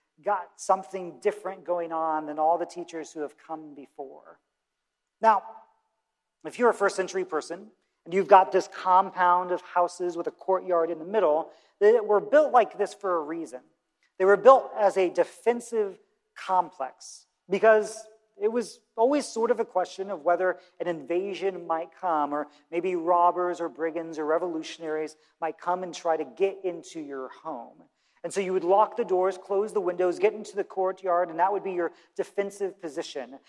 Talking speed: 175 wpm